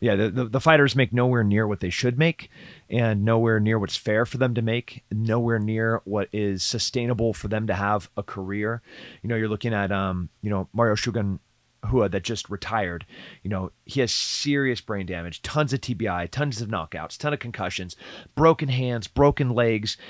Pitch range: 100-125 Hz